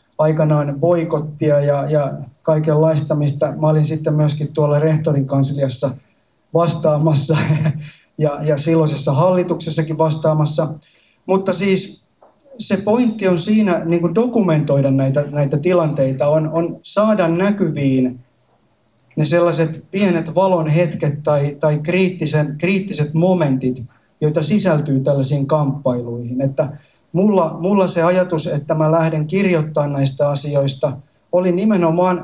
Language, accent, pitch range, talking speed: Finnish, native, 145-170 Hz, 105 wpm